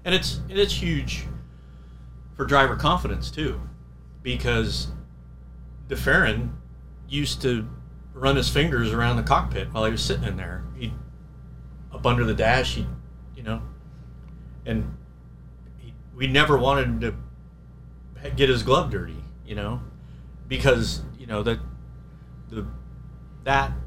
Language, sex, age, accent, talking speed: English, male, 30-49, American, 130 wpm